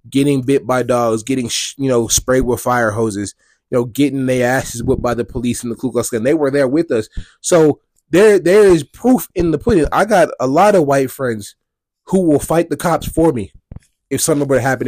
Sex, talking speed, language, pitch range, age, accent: male, 225 wpm, English, 125-180 Hz, 20-39, American